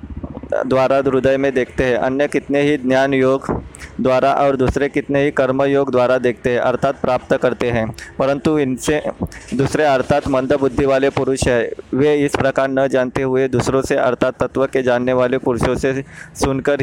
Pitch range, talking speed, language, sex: 125-140 Hz, 50 wpm, Hindi, male